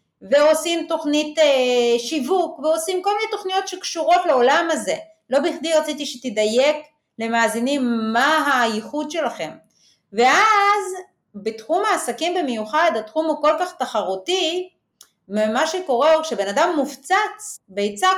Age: 30-49